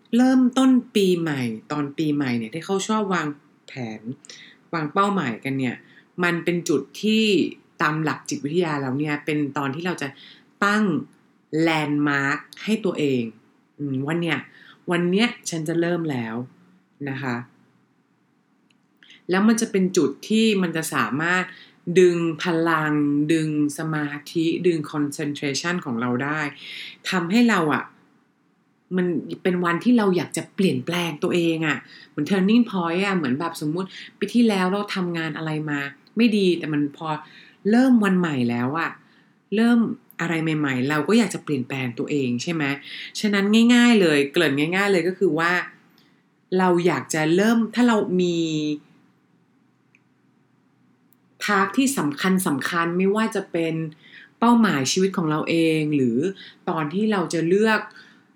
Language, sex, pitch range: English, female, 150-200 Hz